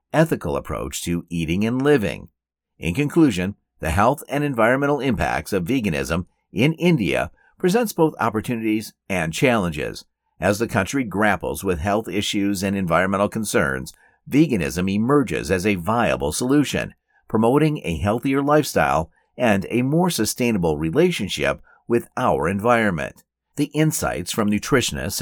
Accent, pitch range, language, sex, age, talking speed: American, 100-145 Hz, English, male, 50-69, 130 wpm